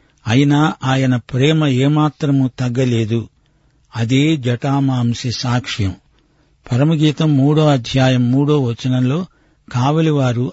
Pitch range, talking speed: 130-150 Hz, 80 wpm